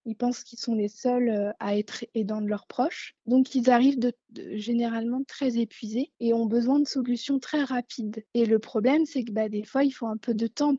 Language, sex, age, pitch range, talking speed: French, female, 20-39, 220-260 Hz, 230 wpm